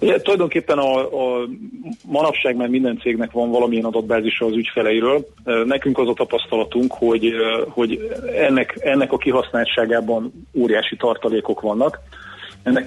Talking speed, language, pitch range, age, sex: 125 wpm, Hungarian, 115-130 Hz, 30-49, male